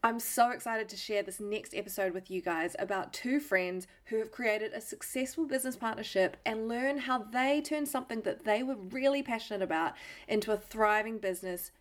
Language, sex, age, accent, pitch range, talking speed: English, female, 20-39, Australian, 195-245 Hz, 190 wpm